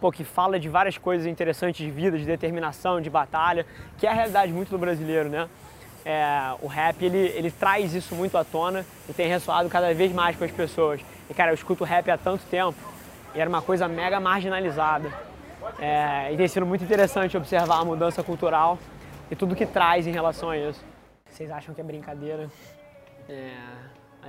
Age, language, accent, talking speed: 20-39, Portuguese, Brazilian, 185 wpm